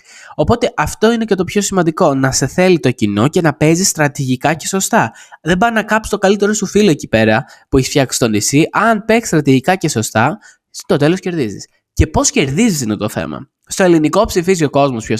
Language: Greek